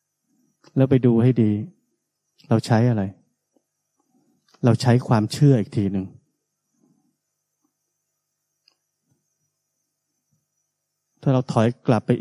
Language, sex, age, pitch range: Thai, male, 30-49, 115-150 Hz